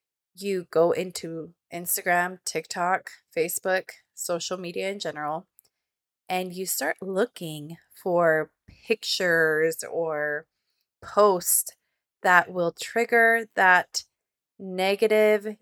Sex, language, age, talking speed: female, English, 20-39, 90 wpm